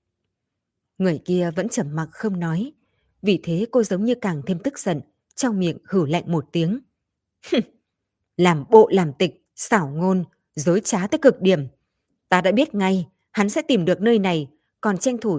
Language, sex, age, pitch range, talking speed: Vietnamese, female, 20-39, 155-215 Hz, 180 wpm